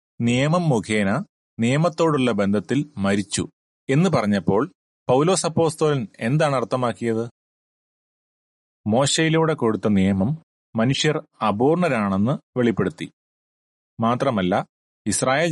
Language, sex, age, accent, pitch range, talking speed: Malayalam, male, 30-49, native, 105-150 Hz, 70 wpm